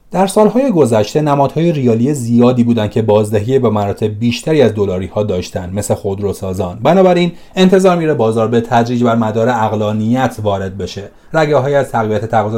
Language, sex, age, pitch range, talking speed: Persian, male, 30-49, 105-145 Hz, 160 wpm